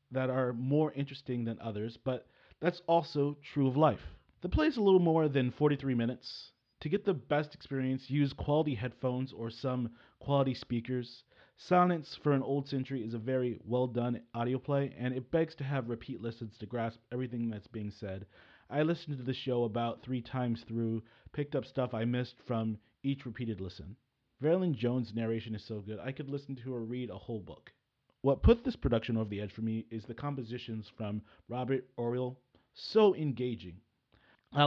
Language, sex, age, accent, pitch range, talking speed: English, male, 30-49, American, 115-135 Hz, 185 wpm